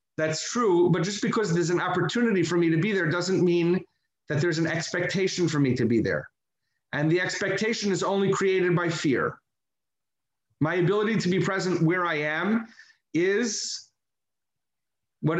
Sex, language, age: male, English, 40-59